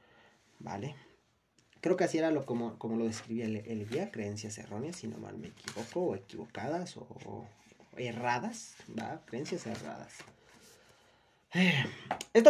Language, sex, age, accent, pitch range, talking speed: Spanish, male, 30-49, Mexican, 115-170 Hz, 145 wpm